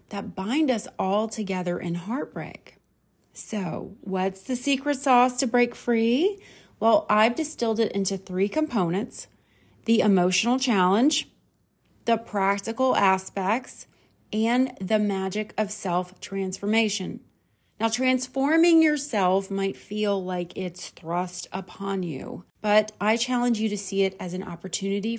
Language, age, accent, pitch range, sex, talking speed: English, 30-49, American, 190-245 Hz, female, 125 wpm